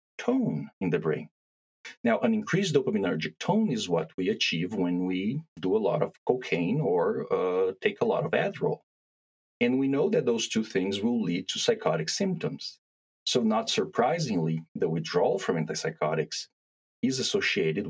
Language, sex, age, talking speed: English, male, 40-59, 160 wpm